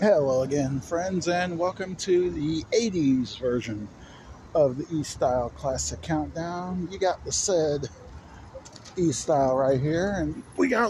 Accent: American